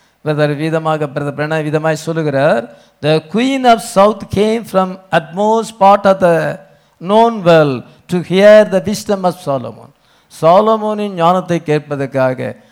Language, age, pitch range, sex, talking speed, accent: English, 50-69, 160-210 Hz, male, 115 wpm, Indian